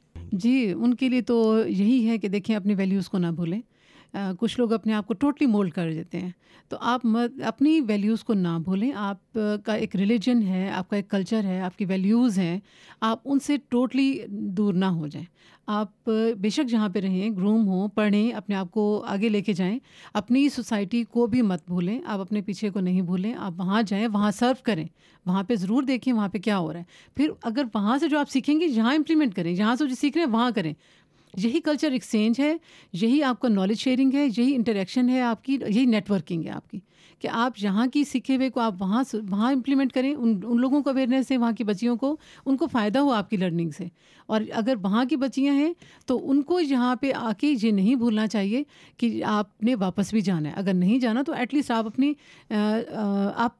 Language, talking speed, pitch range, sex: Urdu, 220 wpm, 200-255 Hz, female